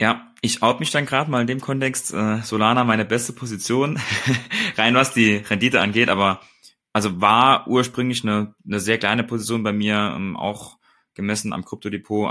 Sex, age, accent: male, 20-39, German